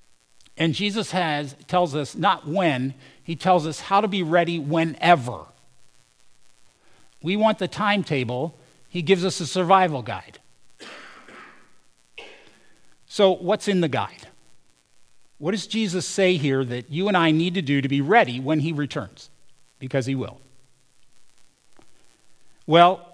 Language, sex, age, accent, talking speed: English, male, 50-69, American, 135 wpm